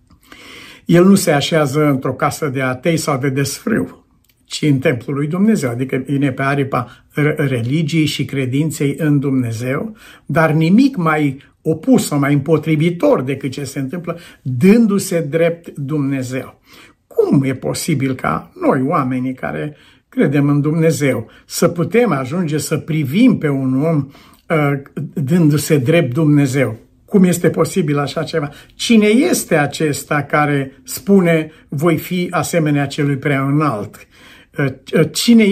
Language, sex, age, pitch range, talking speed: Romanian, male, 60-79, 140-170 Hz, 130 wpm